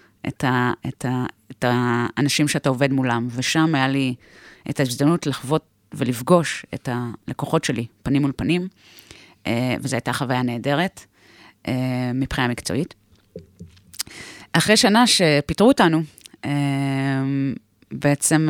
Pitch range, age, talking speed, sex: 125-155 Hz, 30-49, 105 wpm, female